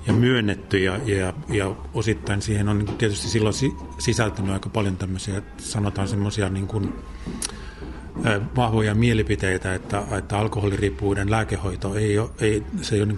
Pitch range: 95-110 Hz